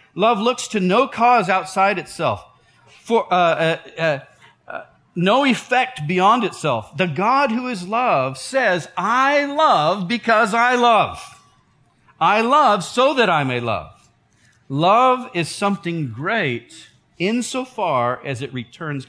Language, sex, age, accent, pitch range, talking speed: English, male, 40-59, American, 135-220 Hz, 130 wpm